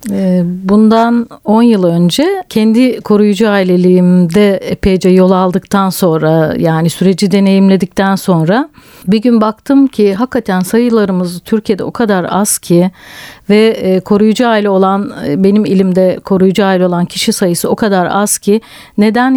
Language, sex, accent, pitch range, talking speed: Turkish, female, native, 180-230 Hz, 130 wpm